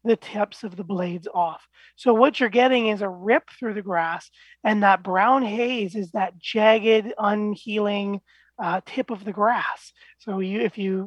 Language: English